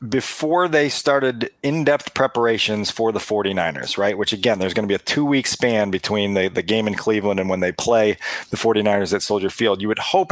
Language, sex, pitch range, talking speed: English, male, 115-145 Hz, 215 wpm